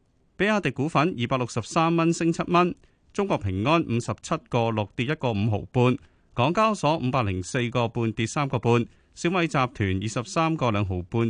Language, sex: Chinese, male